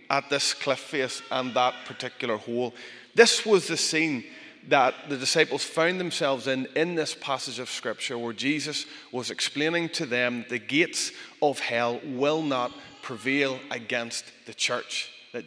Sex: male